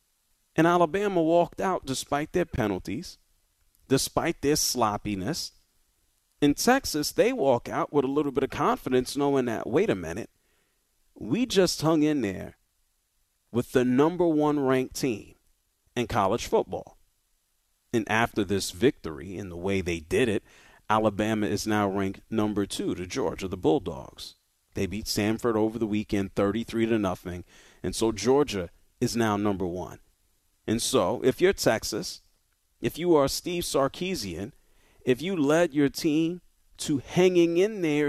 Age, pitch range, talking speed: 40-59, 100-150 Hz, 150 wpm